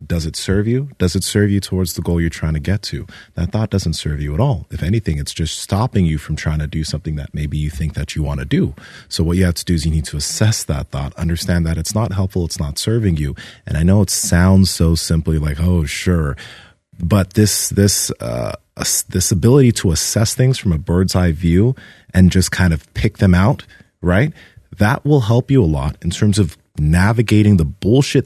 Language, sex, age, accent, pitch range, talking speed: English, male, 30-49, American, 80-105 Hz, 230 wpm